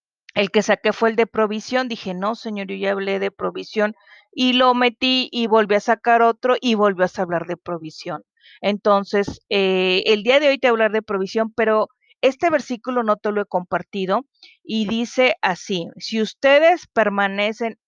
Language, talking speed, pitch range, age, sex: Spanish, 180 wpm, 195-250 Hz, 40-59, female